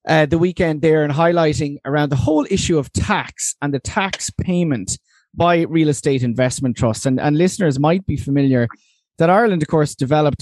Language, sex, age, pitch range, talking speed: English, male, 30-49, 125-160 Hz, 185 wpm